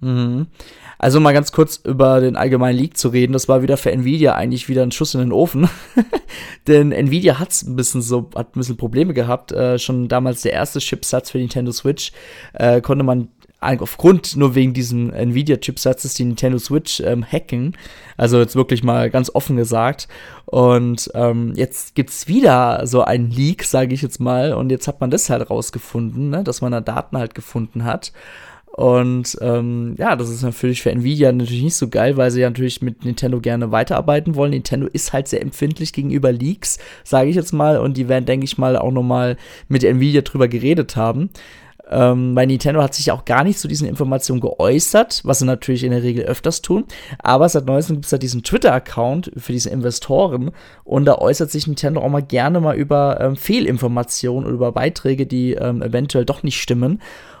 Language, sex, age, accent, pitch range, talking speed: German, male, 20-39, German, 125-145 Hz, 200 wpm